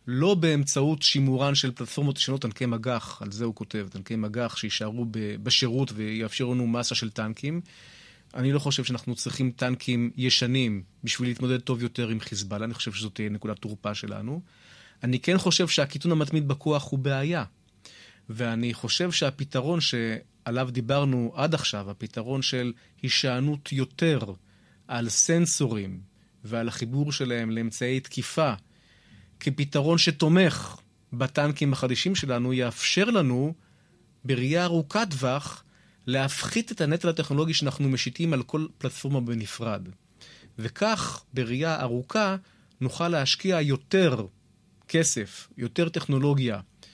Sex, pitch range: male, 115-150 Hz